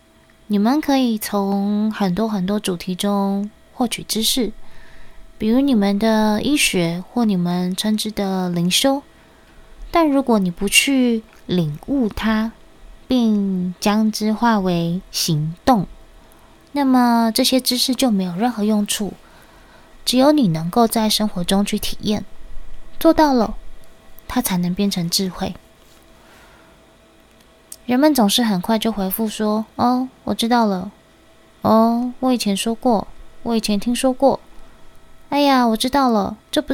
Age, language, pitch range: 20-39, Chinese, 200-250 Hz